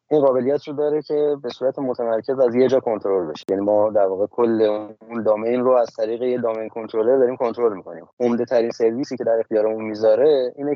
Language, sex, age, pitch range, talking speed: Persian, male, 30-49, 105-135 Hz, 200 wpm